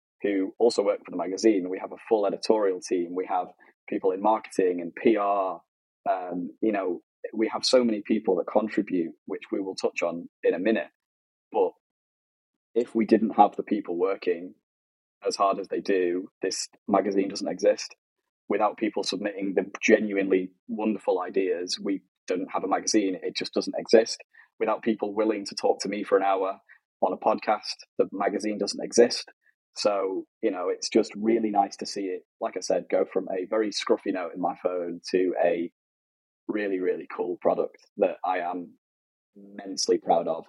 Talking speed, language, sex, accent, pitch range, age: 180 wpm, English, male, British, 95-115 Hz, 10-29